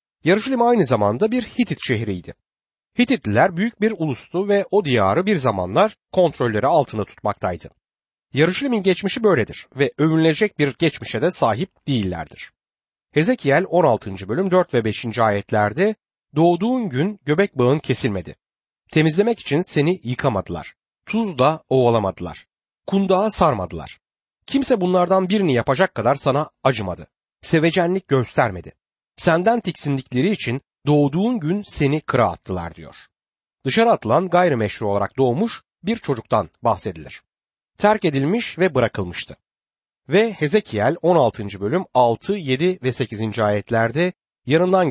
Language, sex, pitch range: Turkish, male, 120-190 Hz